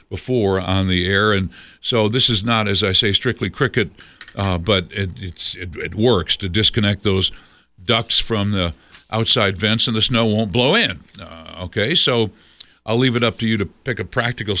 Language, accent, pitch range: English, American, 100-125 Hz